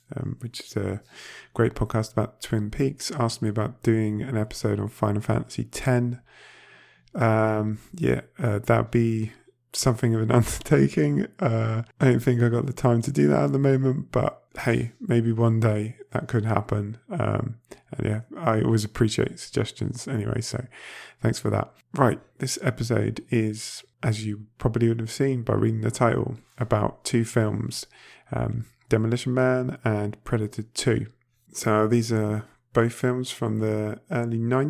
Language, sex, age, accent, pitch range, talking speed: English, male, 20-39, British, 110-120 Hz, 160 wpm